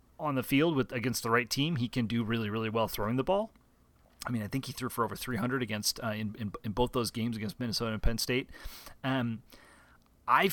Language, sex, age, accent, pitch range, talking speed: English, male, 30-49, American, 110-135 Hz, 235 wpm